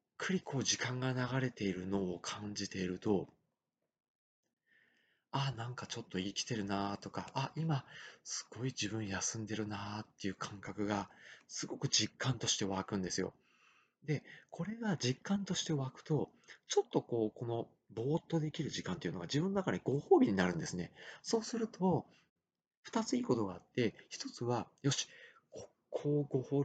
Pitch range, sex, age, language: 105-170 Hz, male, 40-59, Japanese